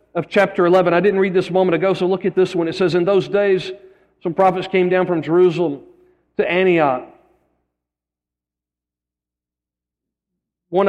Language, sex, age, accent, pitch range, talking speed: English, male, 40-59, American, 155-205 Hz, 160 wpm